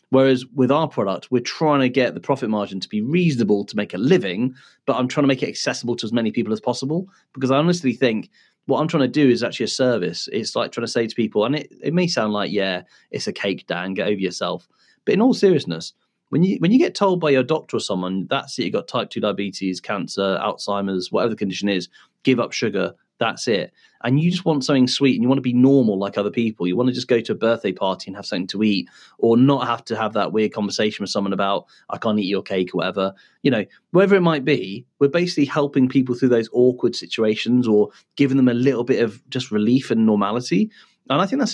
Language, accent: English, British